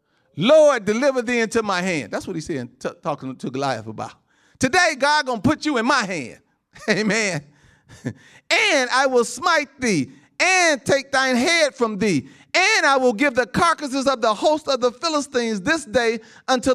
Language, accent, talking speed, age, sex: English, American, 185 wpm, 40-59, male